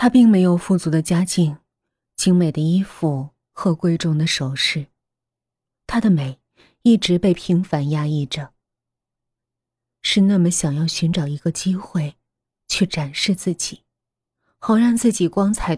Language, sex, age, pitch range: Chinese, female, 20-39, 150-195 Hz